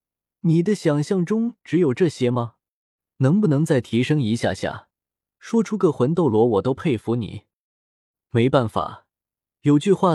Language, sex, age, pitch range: Chinese, male, 20-39, 110-165 Hz